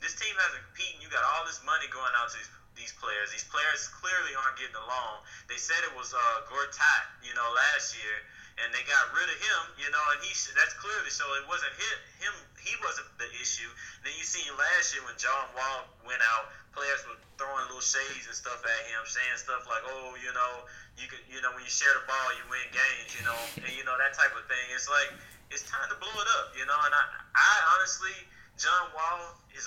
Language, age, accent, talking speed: English, 20-39, American, 230 wpm